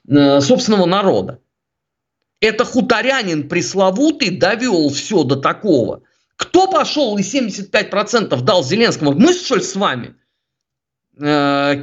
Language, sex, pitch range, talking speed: Russian, male, 175-255 Hz, 105 wpm